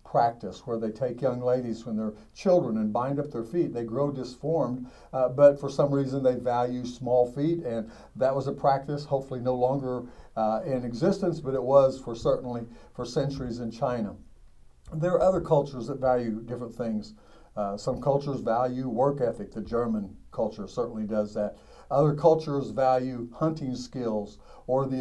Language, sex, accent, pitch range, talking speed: English, male, American, 115-140 Hz, 175 wpm